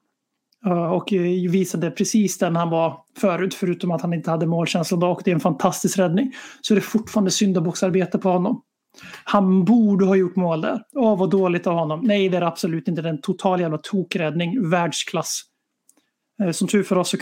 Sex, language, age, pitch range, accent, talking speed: male, Swedish, 30-49, 175-210 Hz, native, 190 wpm